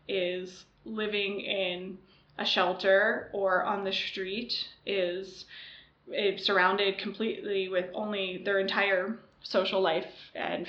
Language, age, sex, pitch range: English, 20-39, female, 190-210 Hz